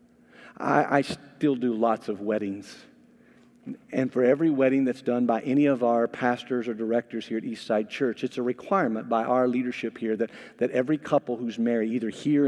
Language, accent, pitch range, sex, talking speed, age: English, American, 125-195 Hz, male, 185 wpm, 50-69